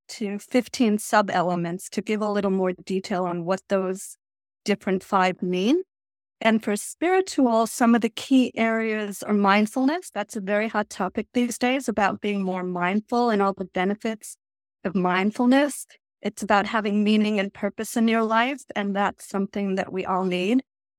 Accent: American